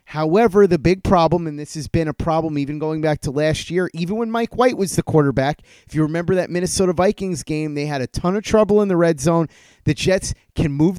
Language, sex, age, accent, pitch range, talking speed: English, male, 30-49, American, 150-175 Hz, 240 wpm